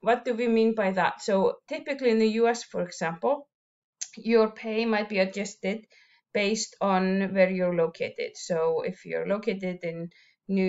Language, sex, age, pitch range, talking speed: English, female, 20-39, 190-230 Hz, 165 wpm